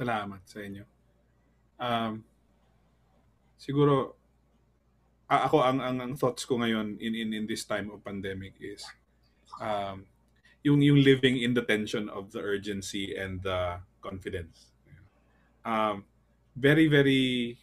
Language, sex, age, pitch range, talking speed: Filipino, male, 20-39, 100-135 Hz, 125 wpm